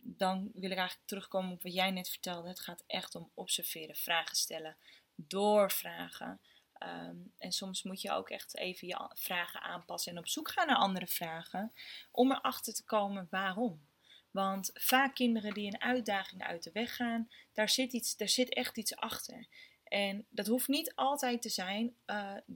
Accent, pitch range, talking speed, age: Dutch, 185-240 Hz, 170 wpm, 20-39